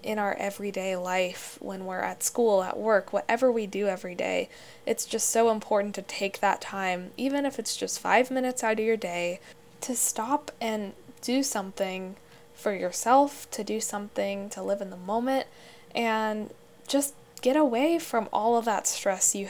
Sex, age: female, 10-29